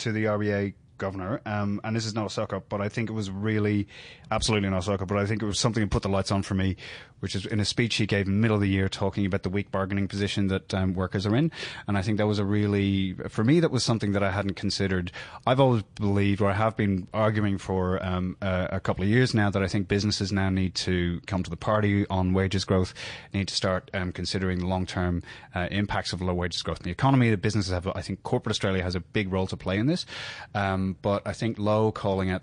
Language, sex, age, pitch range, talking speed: English, male, 30-49, 95-110 Hz, 265 wpm